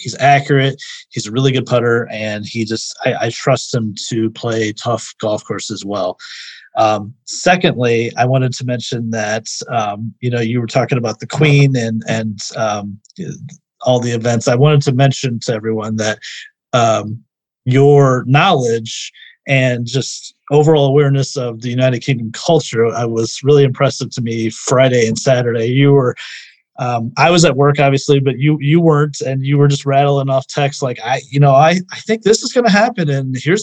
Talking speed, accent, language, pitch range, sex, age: 185 wpm, American, English, 120-150 Hz, male, 30-49